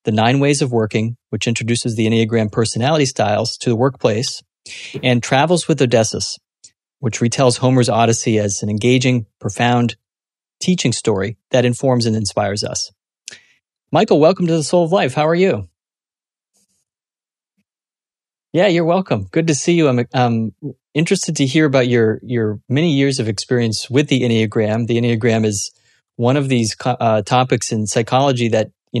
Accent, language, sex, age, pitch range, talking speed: American, English, male, 30-49, 110-130 Hz, 160 wpm